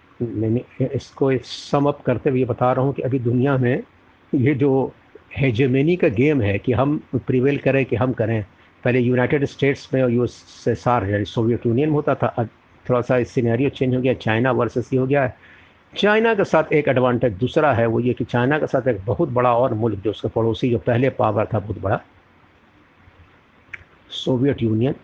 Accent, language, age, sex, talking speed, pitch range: native, Hindi, 50-69, male, 190 wpm, 110-130 Hz